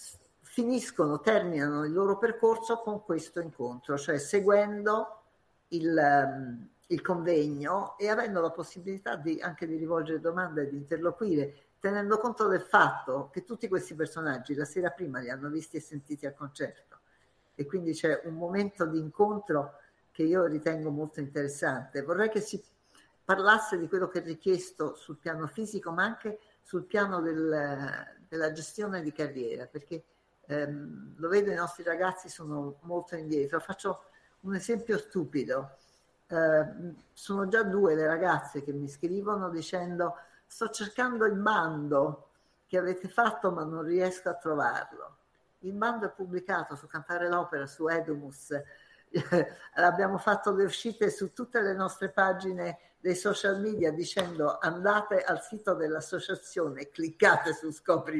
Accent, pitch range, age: native, 155-195 Hz, 50-69